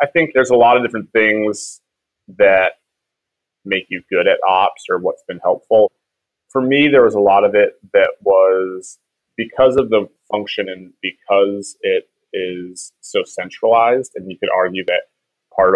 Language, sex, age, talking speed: English, male, 30-49, 170 wpm